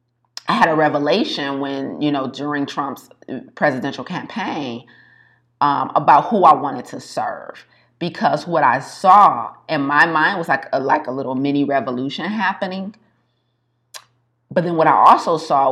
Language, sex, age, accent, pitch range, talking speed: English, female, 30-49, American, 135-170 Hz, 150 wpm